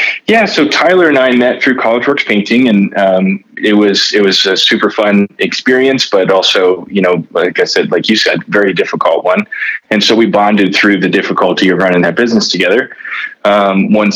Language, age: English, 20-39